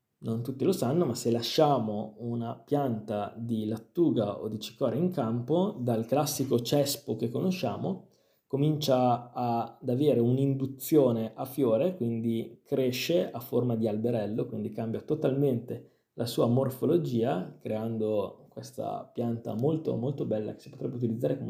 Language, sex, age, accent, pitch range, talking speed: Italian, male, 20-39, native, 115-135 Hz, 140 wpm